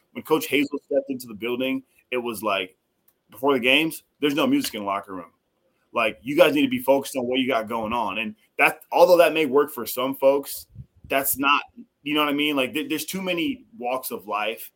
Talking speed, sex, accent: 230 wpm, male, American